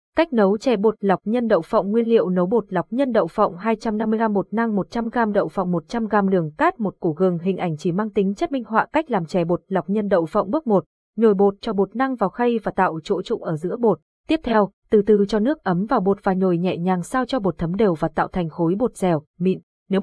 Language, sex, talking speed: Vietnamese, female, 260 wpm